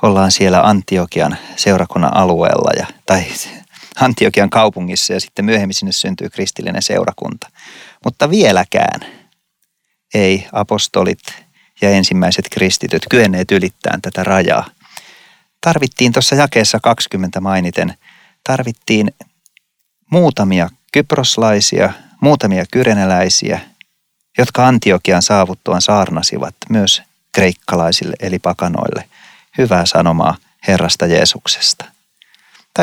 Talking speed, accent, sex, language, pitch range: 90 wpm, native, male, Finnish, 95-120 Hz